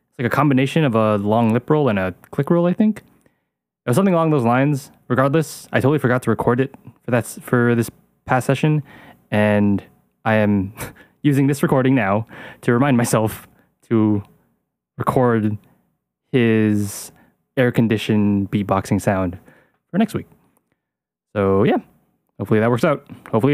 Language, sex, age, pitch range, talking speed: English, male, 20-39, 110-145 Hz, 155 wpm